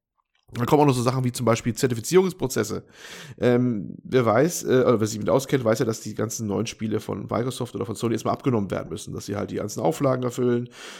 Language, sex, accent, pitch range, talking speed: German, male, German, 115-140 Hz, 230 wpm